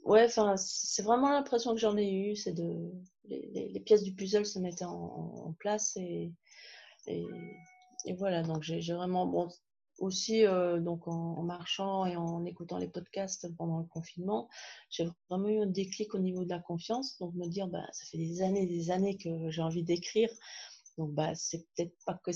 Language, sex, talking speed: French, female, 205 wpm